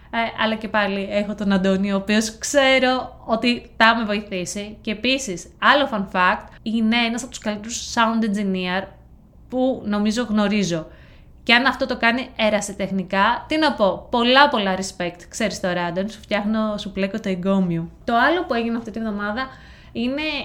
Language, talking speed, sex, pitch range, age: Greek, 170 wpm, female, 195-240 Hz, 20-39